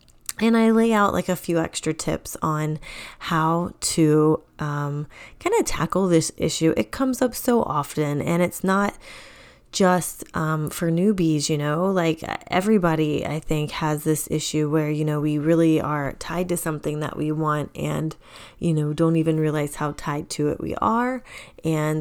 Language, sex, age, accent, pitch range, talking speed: English, female, 20-39, American, 155-185 Hz, 170 wpm